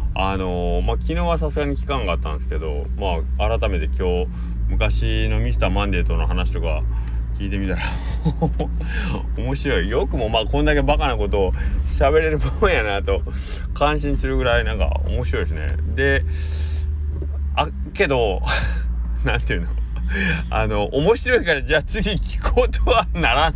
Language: Japanese